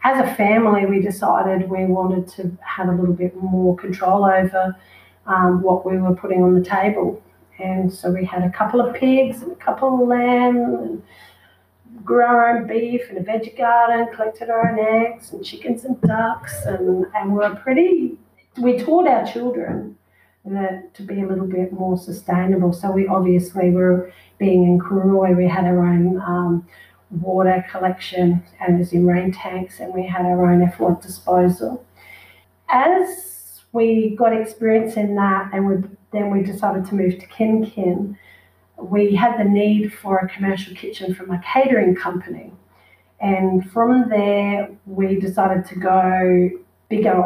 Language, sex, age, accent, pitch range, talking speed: English, female, 40-59, Australian, 180-215 Hz, 170 wpm